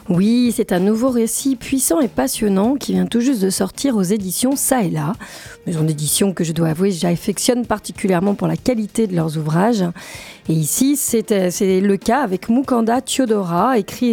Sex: female